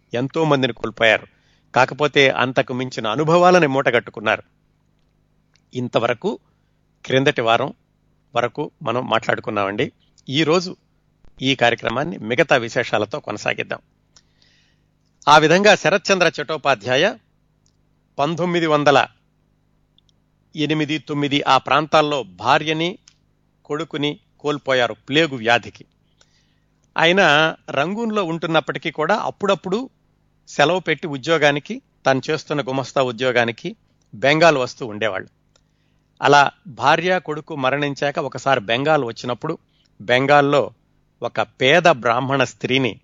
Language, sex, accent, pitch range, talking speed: Telugu, male, native, 125-160 Hz, 80 wpm